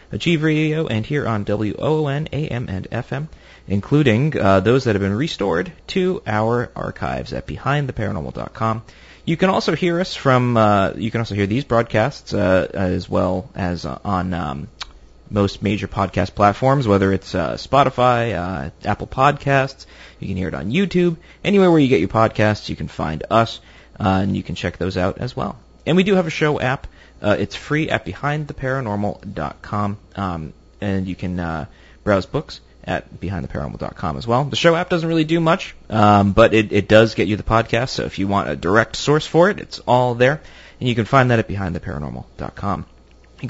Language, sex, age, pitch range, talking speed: English, male, 30-49, 95-130 Hz, 185 wpm